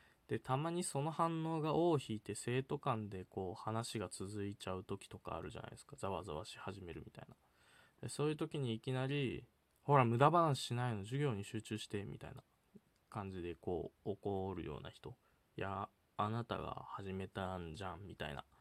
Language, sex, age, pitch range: Japanese, male, 20-39, 100-145 Hz